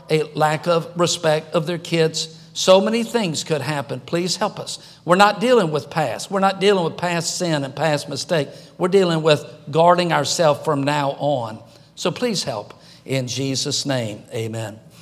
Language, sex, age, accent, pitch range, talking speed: English, male, 50-69, American, 150-175 Hz, 175 wpm